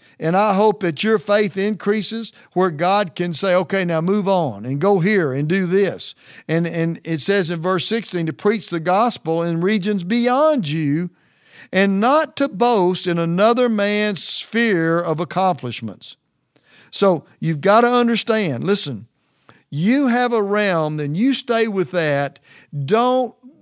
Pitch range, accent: 155-210 Hz, American